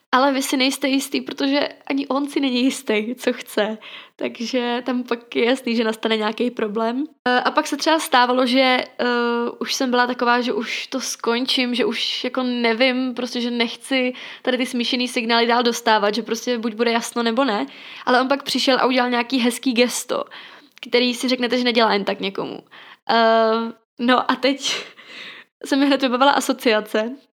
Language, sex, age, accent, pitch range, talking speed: Czech, female, 20-39, native, 230-270 Hz, 180 wpm